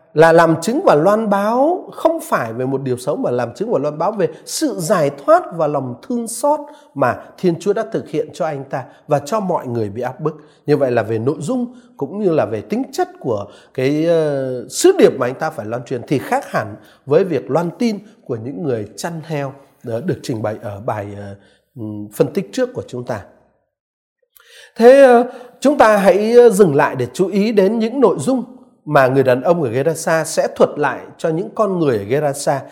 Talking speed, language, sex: 215 wpm, Vietnamese, male